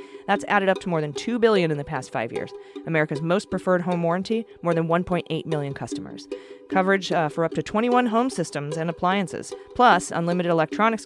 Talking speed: 195 wpm